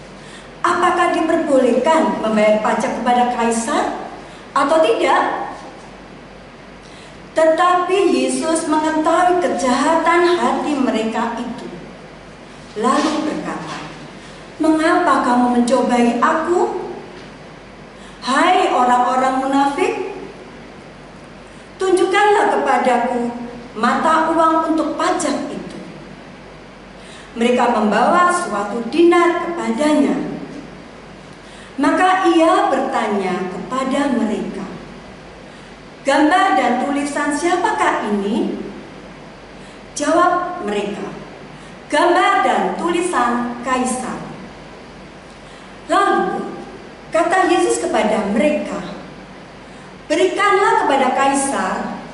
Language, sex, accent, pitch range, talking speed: Indonesian, female, native, 240-345 Hz, 70 wpm